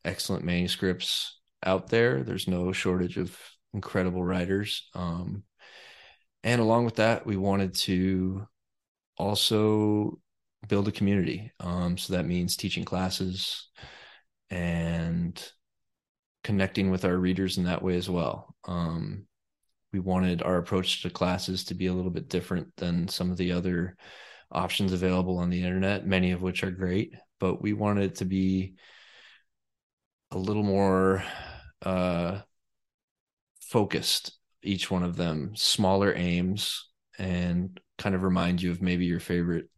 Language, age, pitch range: English, 20-39, 90-100 Hz